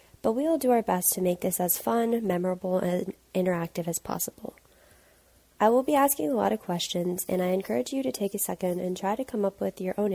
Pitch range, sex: 170-210 Hz, female